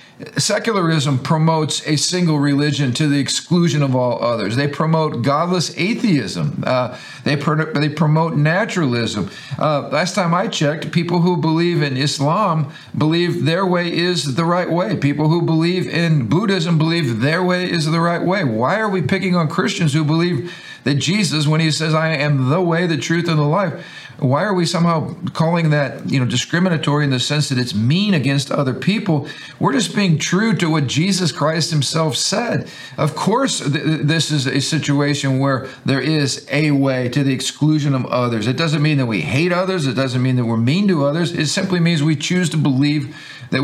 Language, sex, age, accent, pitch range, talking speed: English, male, 50-69, American, 140-170 Hz, 195 wpm